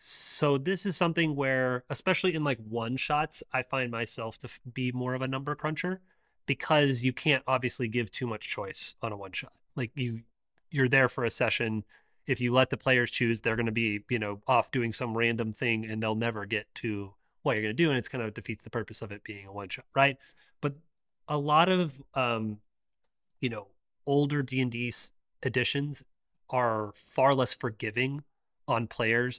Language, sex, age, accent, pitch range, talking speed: English, male, 30-49, American, 115-140 Hz, 200 wpm